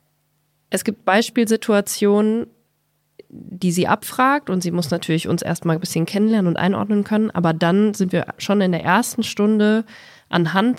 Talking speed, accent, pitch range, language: 155 wpm, German, 165-200 Hz, German